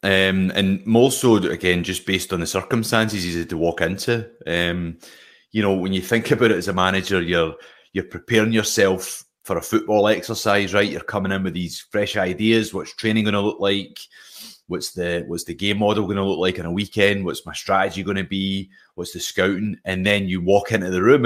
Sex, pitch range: male, 90-105 Hz